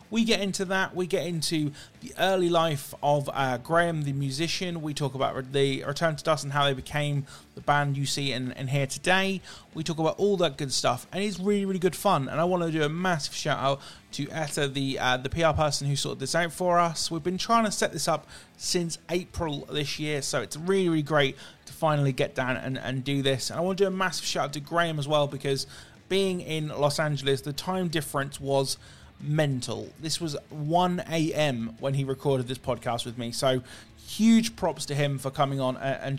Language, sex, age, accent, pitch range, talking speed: English, male, 30-49, British, 135-170 Hz, 225 wpm